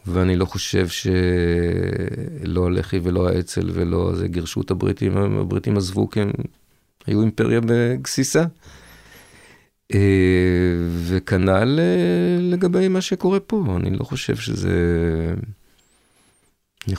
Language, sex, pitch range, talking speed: Hebrew, male, 90-105 Hz, 105 wpm